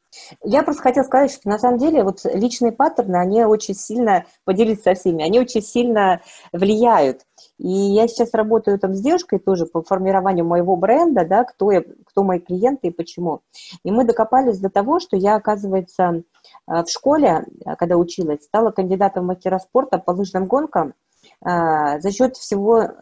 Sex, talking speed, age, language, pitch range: female, 155 wpm, 30-49, Russian, 175-235 Hz